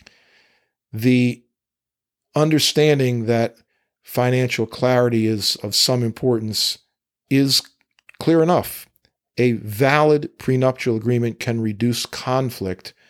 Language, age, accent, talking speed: English, 50-69, American, 85 wpm